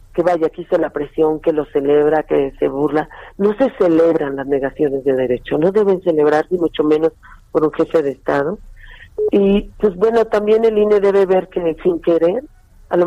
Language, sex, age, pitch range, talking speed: Spanish, female, 40-59, 155-210 Hz, 195 wpm